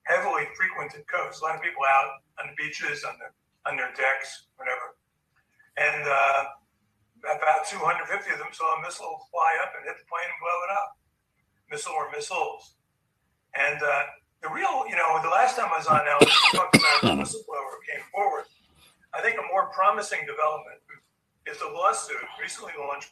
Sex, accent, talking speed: male, American, 180 wpm